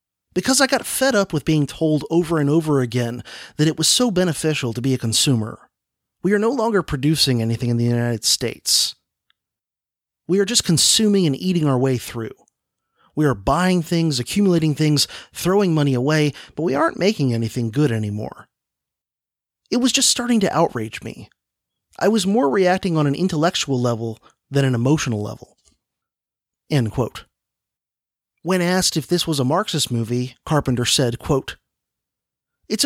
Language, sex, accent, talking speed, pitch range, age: English, male, American, 165 wpm, 130-185 Hz, 30-49